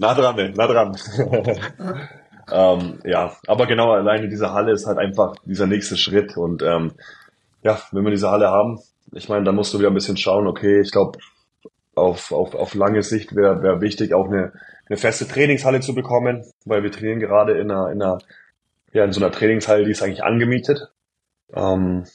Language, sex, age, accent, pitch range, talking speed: German, male, 20-39, German, 95-110 Hz, 190 wpm